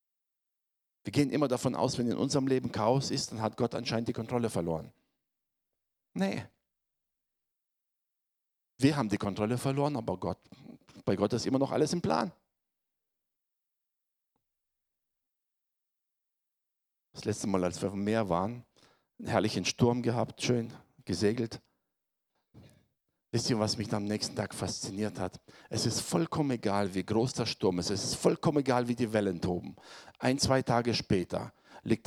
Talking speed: 150 wpm